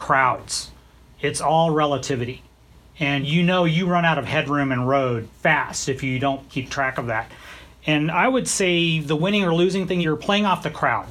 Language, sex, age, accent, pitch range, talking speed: English, male, 30-49, American, 140-180 Hz, 195 wpm